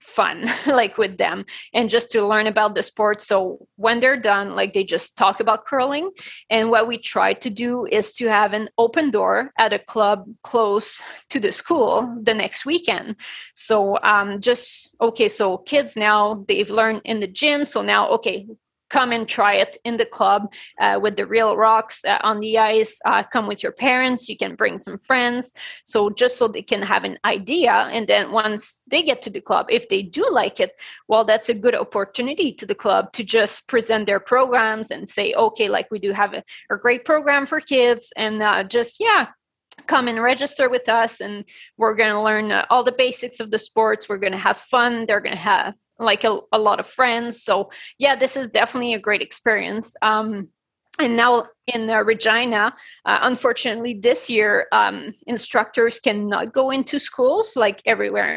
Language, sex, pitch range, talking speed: English, female, 215-255 Hz, 195 wpm